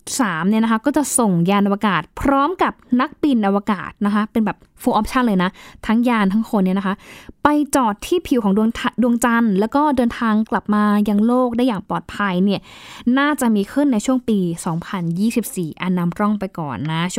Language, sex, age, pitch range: Thai, female, 20-39, 195-260 Hz